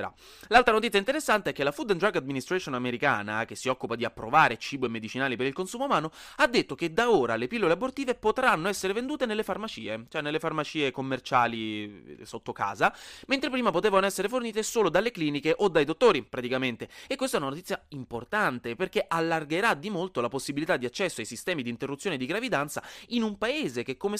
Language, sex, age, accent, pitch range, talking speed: Italian, male, 30-49, native, 125-200 Hz, 195 wpm